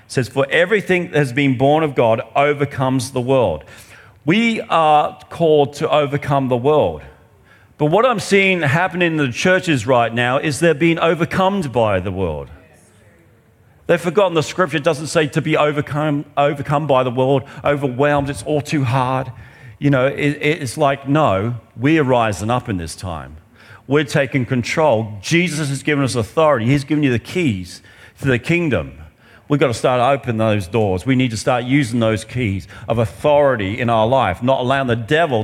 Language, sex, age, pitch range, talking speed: English, male, 40-59, 115-150 Hz, 185 wpm